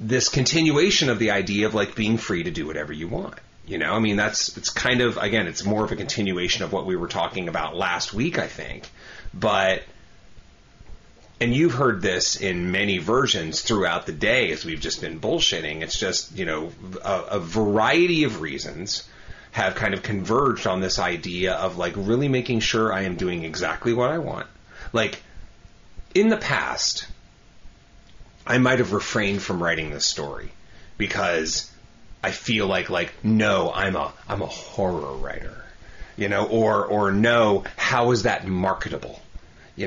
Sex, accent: male, American